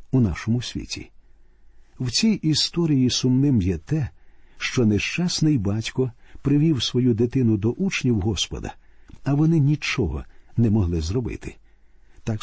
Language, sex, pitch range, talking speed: Ukrainian, male, 110-145 Hz, 120 wpm